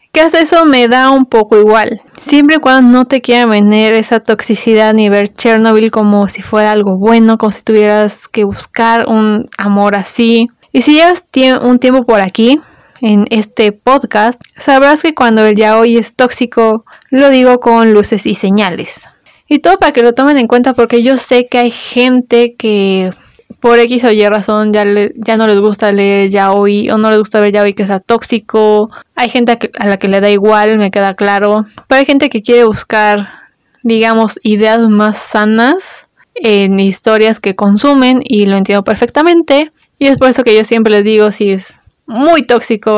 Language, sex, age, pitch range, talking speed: Spanish, female, 20-39, 210-250 Hz, 190 wpm